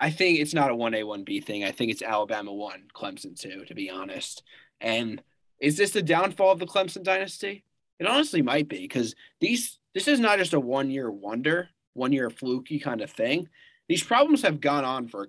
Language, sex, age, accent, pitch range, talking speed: English, male, 20-39, American, 120-165 Hz, 205 wpm